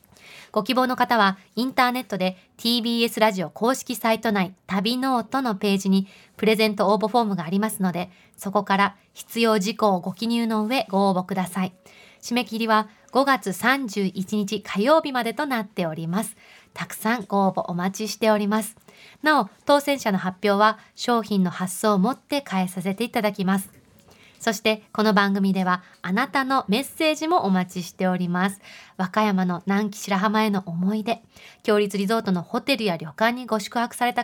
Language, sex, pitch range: Japanese, female, 190-235 Hz